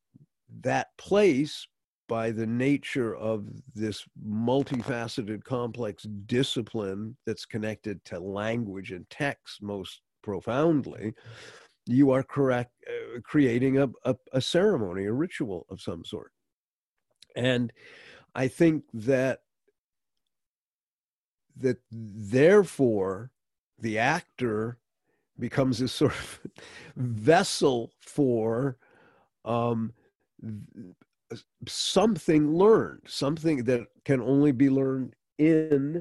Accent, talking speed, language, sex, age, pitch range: American, 95 wpm, English, male, 50-69, 110-145 Hz